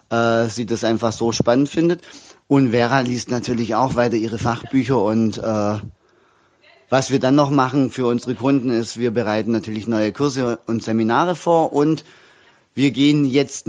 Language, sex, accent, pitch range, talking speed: German, male, German, 115-135 Hz, 165 wpm